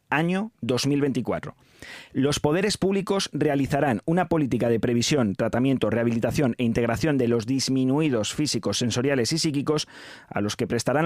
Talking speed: 135 wpm